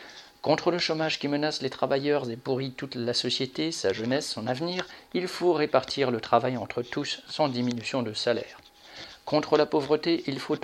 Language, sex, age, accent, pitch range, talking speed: French, male, 50-69, French, 125-150 Hz, 180 wpm